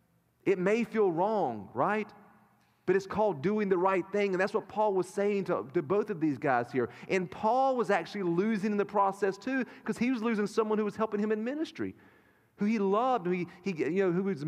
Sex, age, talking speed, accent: male, 40-59, 230 wpm, American